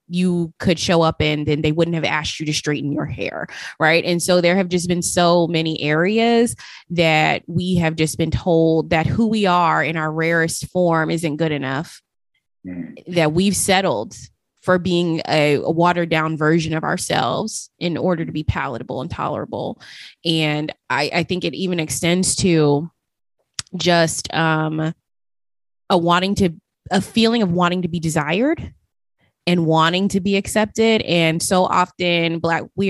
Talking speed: 165 wpm